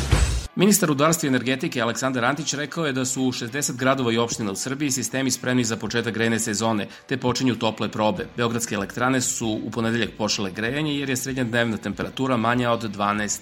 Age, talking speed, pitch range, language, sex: 40-59, 185 wpm, 110-135 Hz, English, male